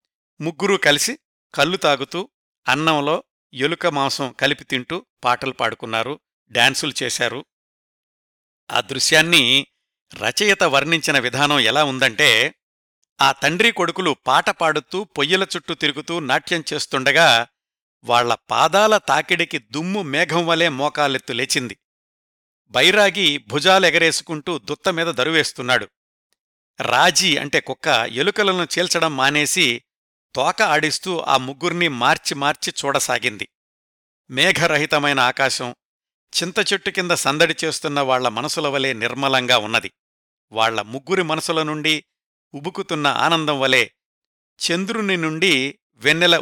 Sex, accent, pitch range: male, native, 135-170 Hz